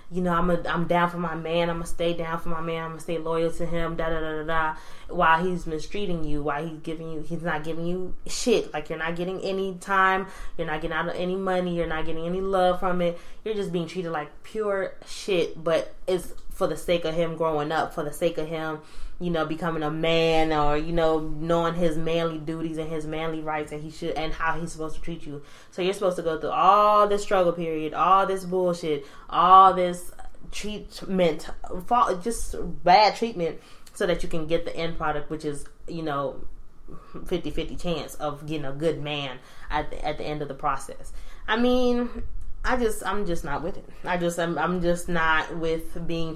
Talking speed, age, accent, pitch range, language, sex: 225 wpm, 20-39, American, 155-180 Hz, English, female